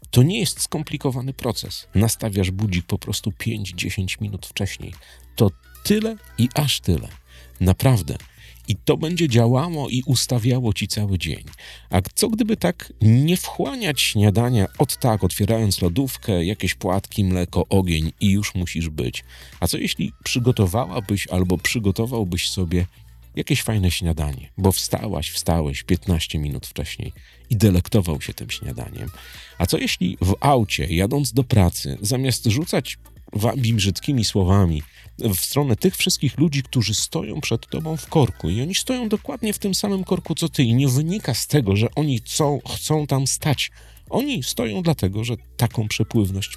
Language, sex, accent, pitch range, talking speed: Polish, male, native, 90-130 Hz, 150 wpm